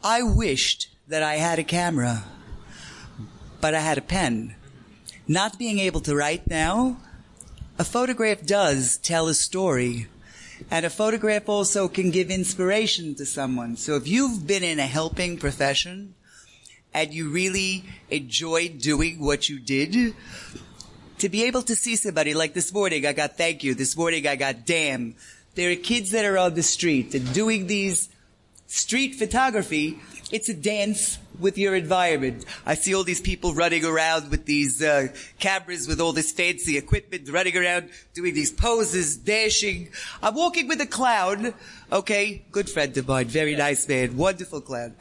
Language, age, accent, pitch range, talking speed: English, 30-49, American, 150-210 Hz, 165 wpm